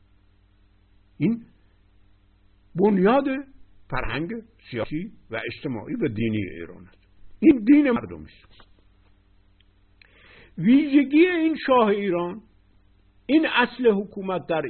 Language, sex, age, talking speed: Persian, male, 60-79, 85 wpm